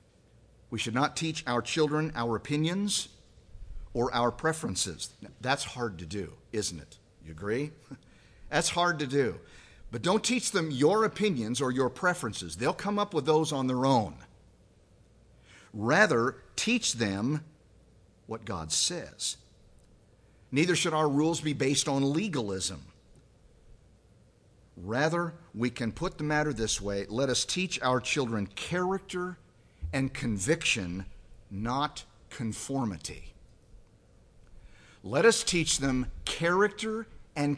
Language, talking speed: English, 130 wpm